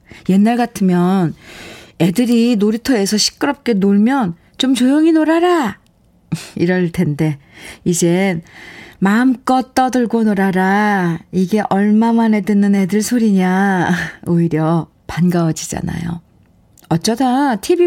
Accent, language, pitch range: native, Korean, 175-240 Hz